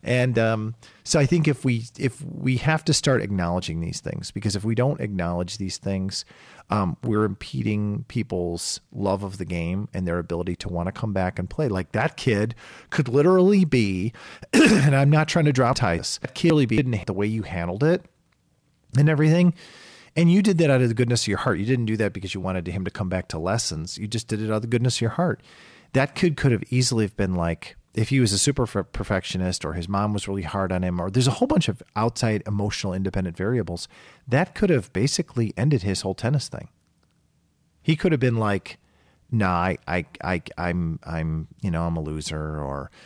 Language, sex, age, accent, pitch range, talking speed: English, male, 40-59, American, 90-130 Hz, 220 wpm